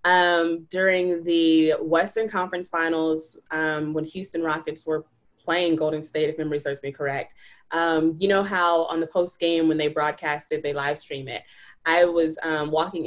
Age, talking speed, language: 20-39, 175 wpm, English